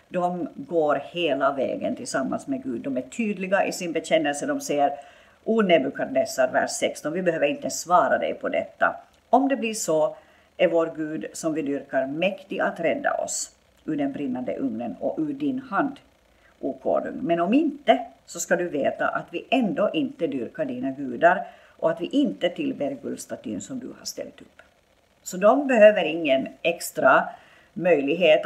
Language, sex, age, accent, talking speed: Swedish, female, 50-69, native, 170 wpm